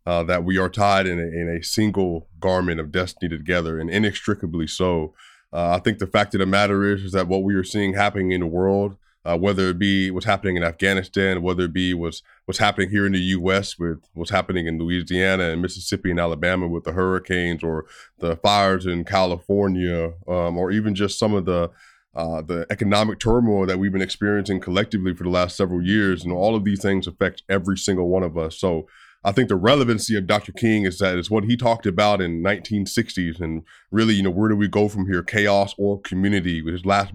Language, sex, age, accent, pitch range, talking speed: English, male, 20-39, American, 90-100 Hz, 220 wpm